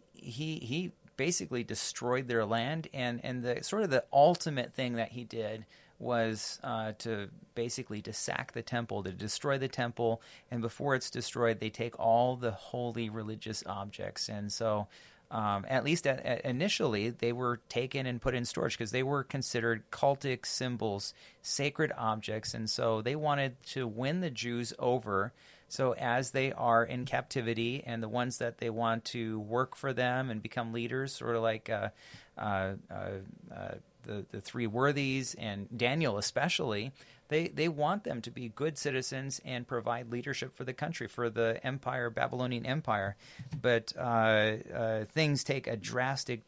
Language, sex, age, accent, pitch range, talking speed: English, male, 30-49, American, 110-130 Hz, 170 wpm